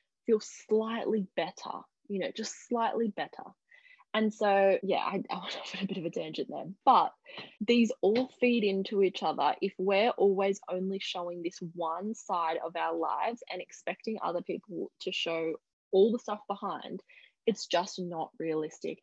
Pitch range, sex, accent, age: 175-225 Hz, female, Australian, 10-29